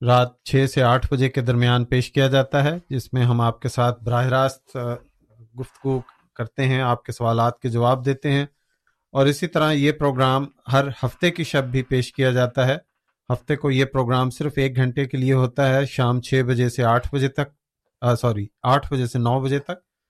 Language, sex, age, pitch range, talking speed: Urdu, male, 40-59, 125-140 Hz, 205 wpm